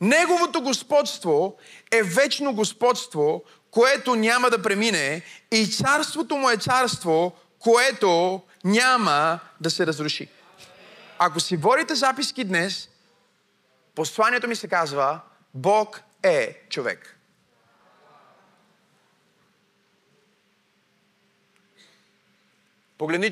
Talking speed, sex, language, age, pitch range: 80 wpm, male, Bulgarian, 30-49, 180-250 Hz